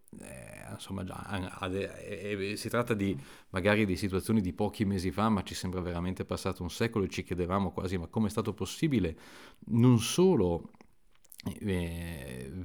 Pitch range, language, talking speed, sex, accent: 85-105 Hz, Italian, 165 wpm, male, native